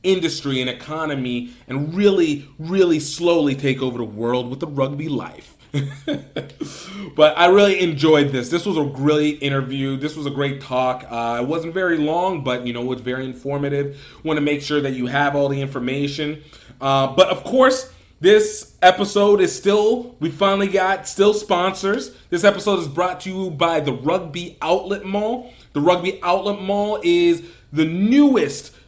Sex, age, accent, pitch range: male, 30-49, American, 135-185 Hz